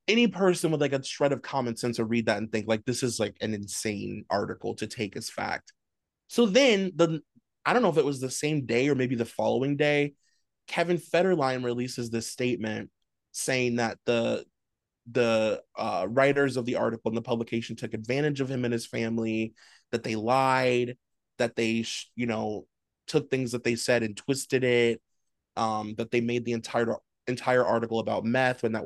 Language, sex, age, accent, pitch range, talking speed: English, male, 20-39, American, 115-140 Hz, 195 wpm